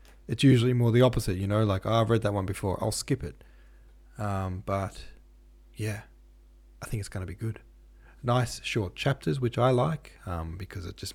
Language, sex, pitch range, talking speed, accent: English, male, 90-120 Hz, 195 wpm, Australian